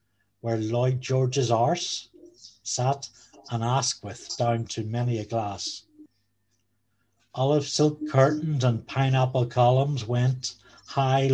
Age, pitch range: 60-79, 120-140 Hz